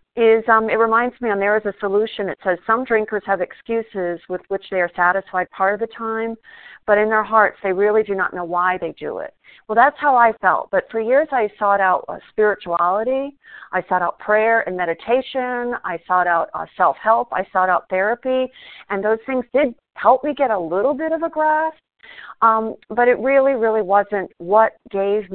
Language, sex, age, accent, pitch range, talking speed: English, female, 50-69, American, 185-230 Hz, 205 wpm